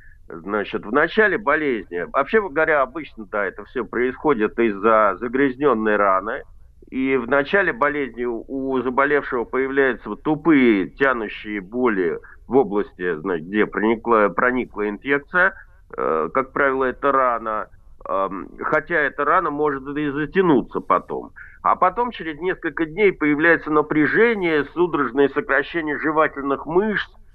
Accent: native